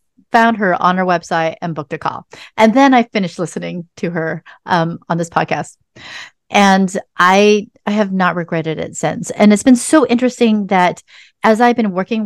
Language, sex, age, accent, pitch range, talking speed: English, female, 40-59, American, 170-215 Hz, 185 wpm